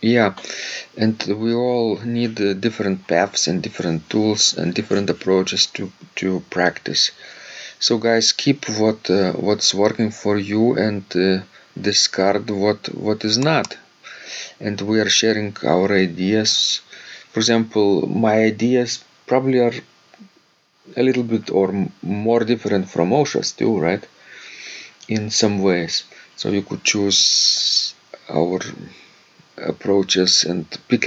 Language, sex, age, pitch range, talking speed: English, male, 40-59, 95-115 Hz, 125 wpm